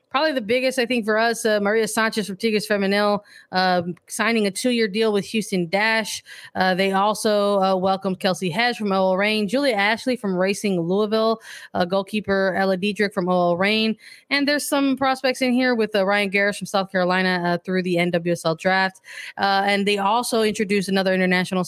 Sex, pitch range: female, 175-215 Hz